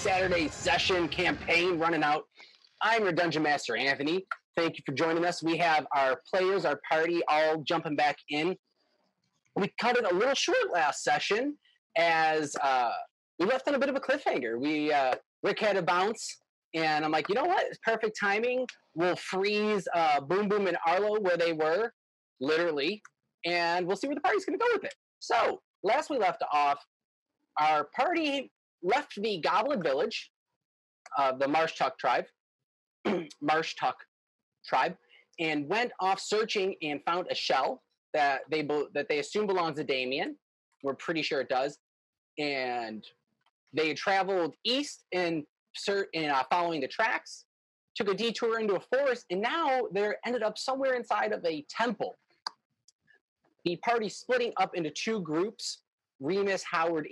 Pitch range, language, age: 155-235 Hz, English, 30-49